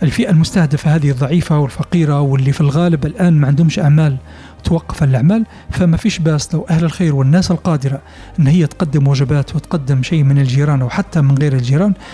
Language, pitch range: Arabic, 140-165 Hz